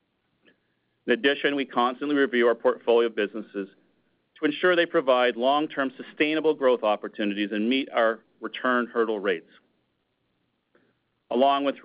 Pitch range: 115-140 Hz